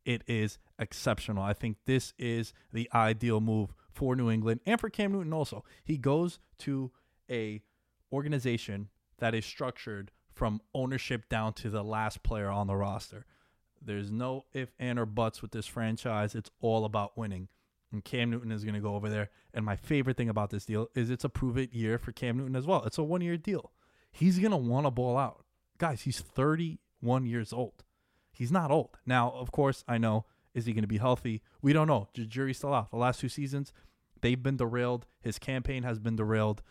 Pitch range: 110-130 Hz